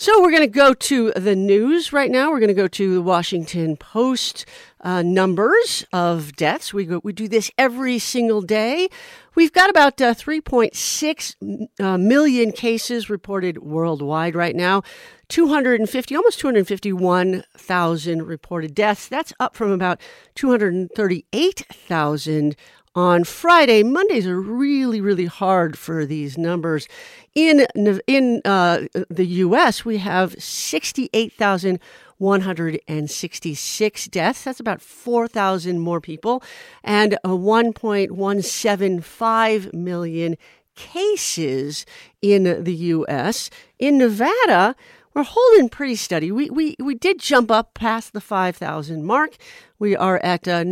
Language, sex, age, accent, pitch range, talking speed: English, female, 50-69, American, 180-265 Hz, 135 wpm